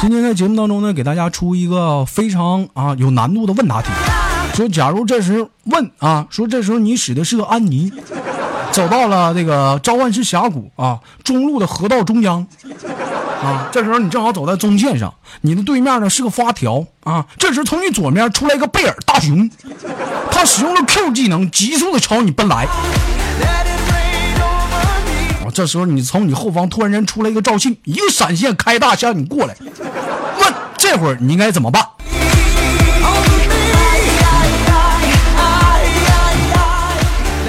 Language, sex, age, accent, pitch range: Chinese, male, 50-69, native, 155-235 Hz